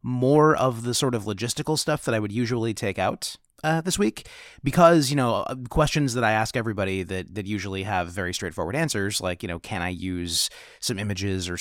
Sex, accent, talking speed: male, American, 205 wpm